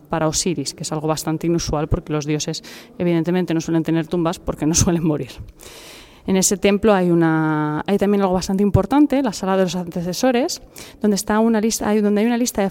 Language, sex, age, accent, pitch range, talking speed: Spanish, female, 30-49, Spanish, 170-210 Hz, 195 wpm